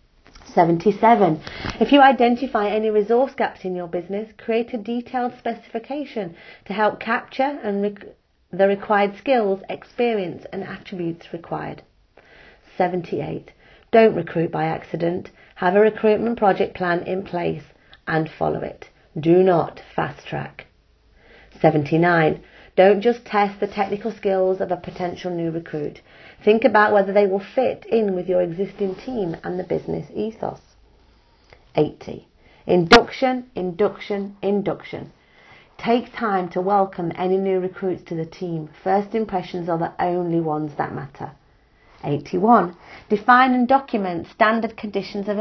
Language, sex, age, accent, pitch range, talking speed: English, female, 40-59, British, 180-225 Hz, 135 wpm